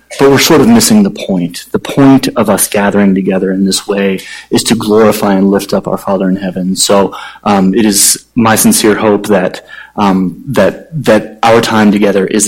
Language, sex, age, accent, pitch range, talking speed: English, male, 30-49, American, 105-175 Hz, 195 wpm